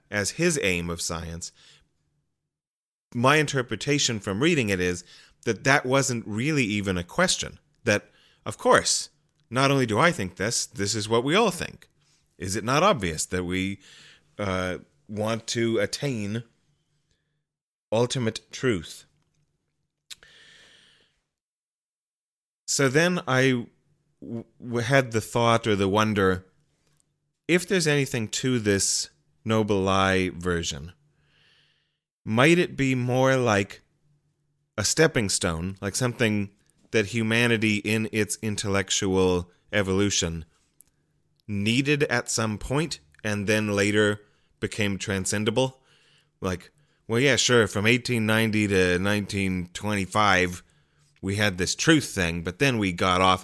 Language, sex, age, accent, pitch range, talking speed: English, male, 30-49, American, 95-130 Hz, 120 wpm